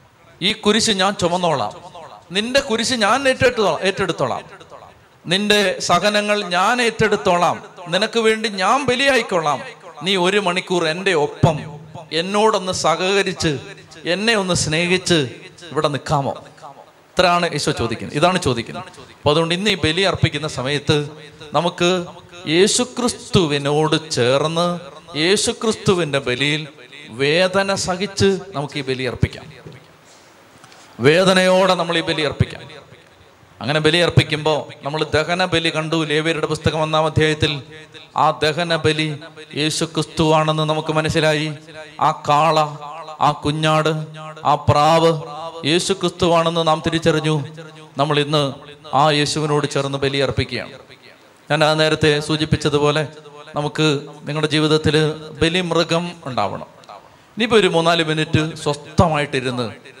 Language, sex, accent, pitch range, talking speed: Malayalam, male, native, 150-180 Hz, 105 wpm